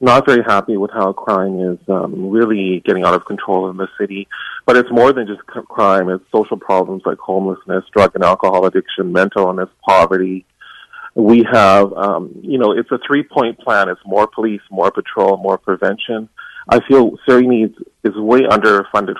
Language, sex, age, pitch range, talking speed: English, male, 40-59, 100-125 Hz, 180 wpm